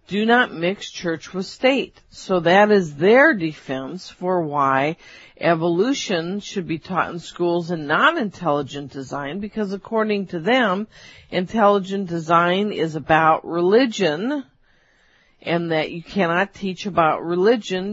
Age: 50-69